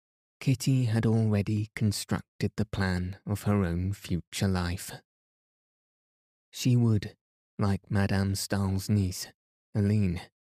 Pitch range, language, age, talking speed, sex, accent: 95-110 Hz, English, 20-39, 100 wpm, male, British